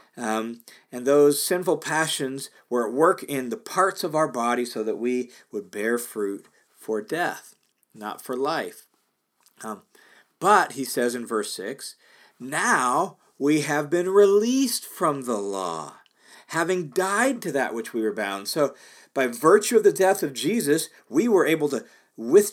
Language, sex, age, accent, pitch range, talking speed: English, male, 50-69, American, 125-180 Hz, 160 wpm